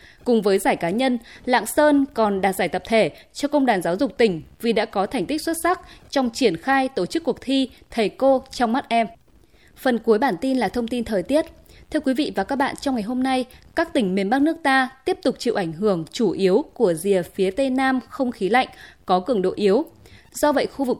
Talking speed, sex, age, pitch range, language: 245 wpm, female, 20-39, 210-270 Hz, Vietnamese